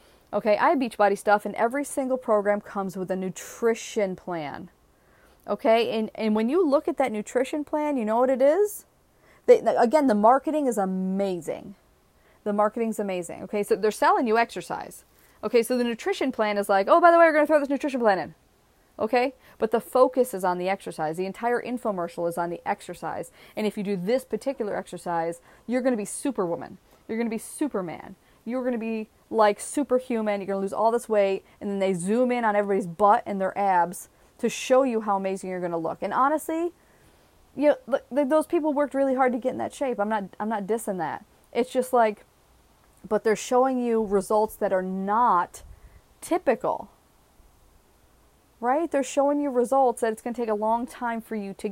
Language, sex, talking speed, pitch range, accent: English, female, 205 wpm, 200-260 Hz, American